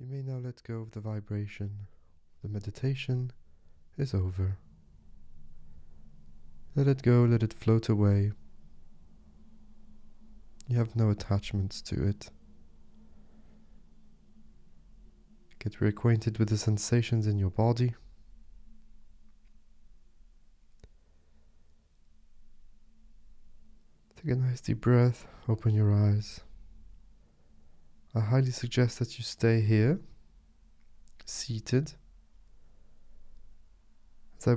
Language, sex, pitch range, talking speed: English, male, 75-115 Hz, 90 wpm